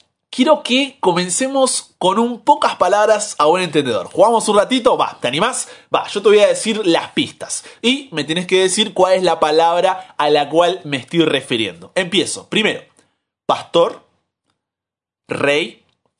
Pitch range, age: 160-250 Hz, 30-49